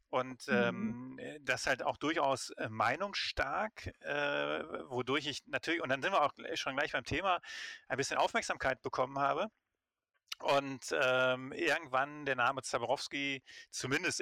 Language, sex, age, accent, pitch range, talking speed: German, male, 30-49, German, 115-145 Hz, 135 wpm